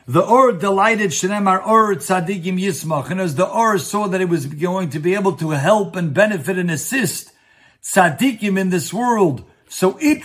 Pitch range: 160-195 Hz